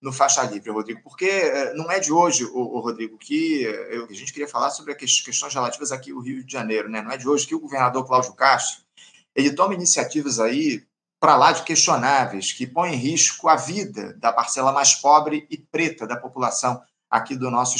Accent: Brazilian